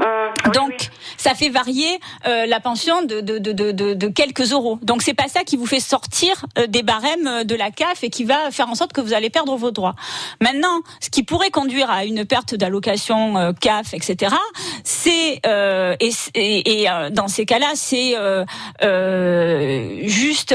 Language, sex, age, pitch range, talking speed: French, female, 40-59, 210-275 Hz, 195 wpm